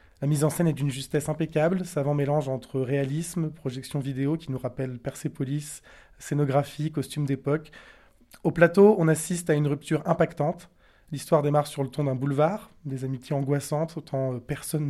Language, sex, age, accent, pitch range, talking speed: French, male, 20-39, French, 140-160 Hz, 165 wpm